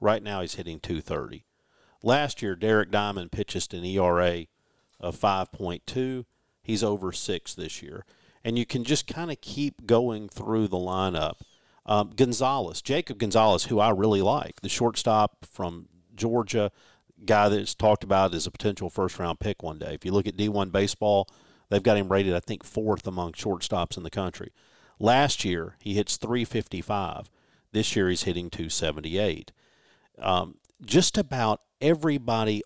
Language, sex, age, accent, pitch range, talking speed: English, male, 50-69, American, 95-130 Hz, 160 wpm